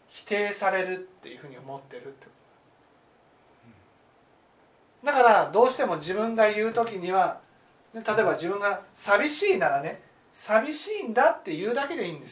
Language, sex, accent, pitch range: Japanese, male, native, 190-295 Hz